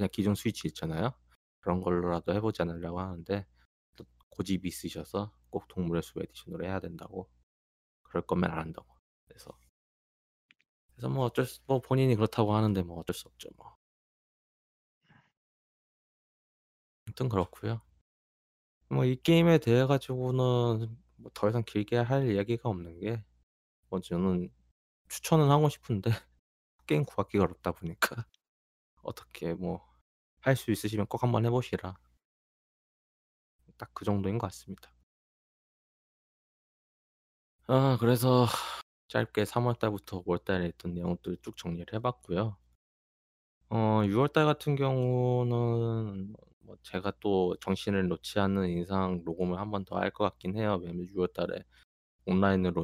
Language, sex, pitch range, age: Korean, male, 80-110 Hz, 20-39